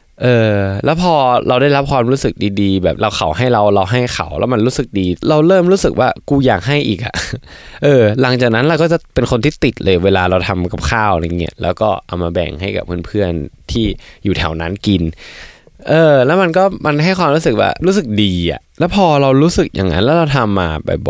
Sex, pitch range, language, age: male, 90-125 Hz, Thai, 20-39